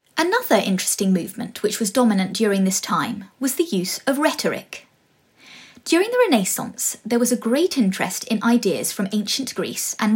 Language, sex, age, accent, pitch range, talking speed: English, female, 30-49, British, 200-260 Hz, 165 wpm